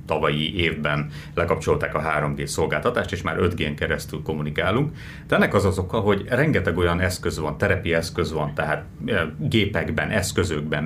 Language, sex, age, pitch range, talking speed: Hungarian, male, 30-49, 80-100 Hz, 150 wpm